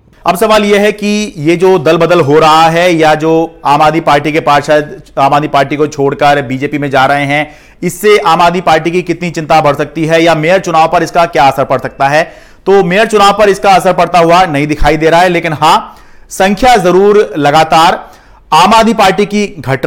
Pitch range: 155-195 Hz